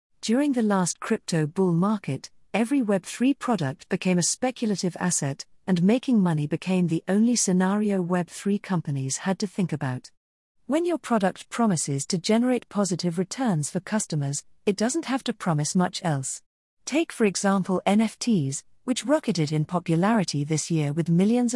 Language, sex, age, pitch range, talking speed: English, female, 40-59, 160-215 Hz, 155 wpm